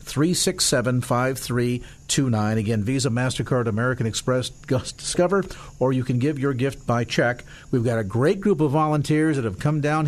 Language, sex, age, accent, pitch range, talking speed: English, male, 50-69, American, 125-155 Hz, 190 wpm